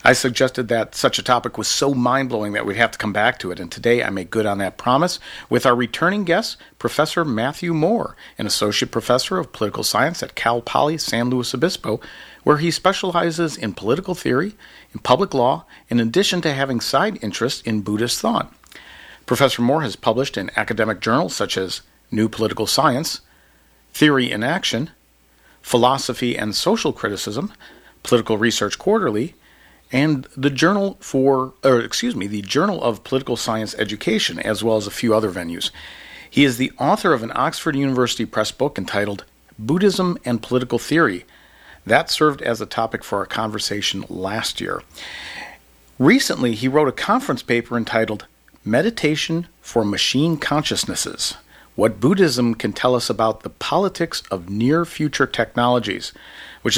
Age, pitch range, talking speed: 40-59, 110-150 Hz, 165 wpm